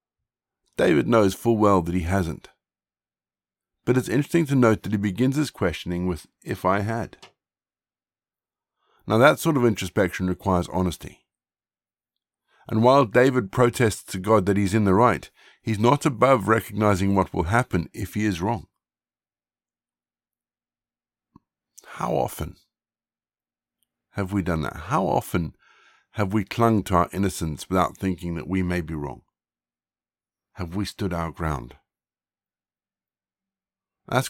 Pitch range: 90-120 Hz